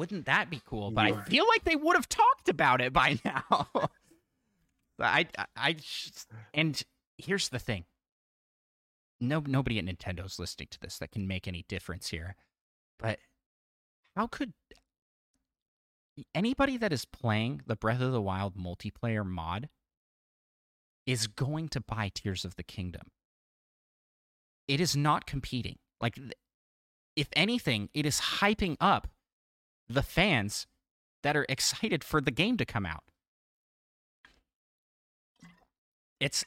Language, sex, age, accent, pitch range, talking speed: English, male, 30-49, American, 95-150 Hz, 135 wpm